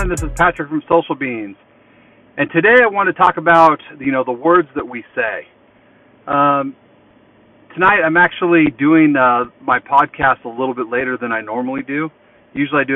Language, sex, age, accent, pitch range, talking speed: English, male, 40-59, American, 115-145 Hz, 180 wpm